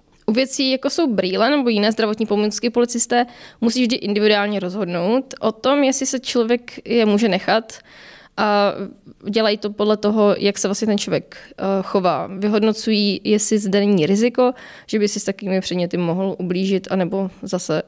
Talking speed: 160 wpm